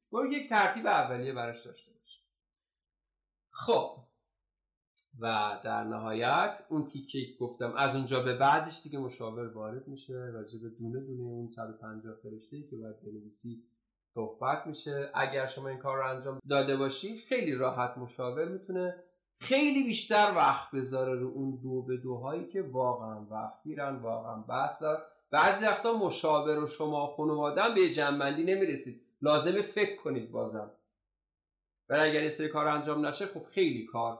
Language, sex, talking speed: Persian, male, 145 wpm